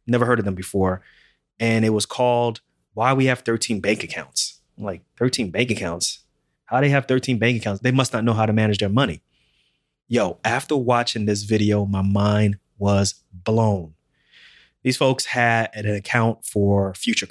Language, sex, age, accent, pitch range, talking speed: English, male, 30-49, American, 100-120 Hz, 180 wpm